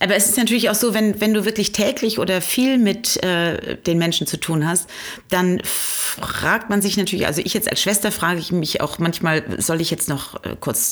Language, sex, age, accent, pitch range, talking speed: German, female, 40-59, German, 155-210 Hz, 225 wpm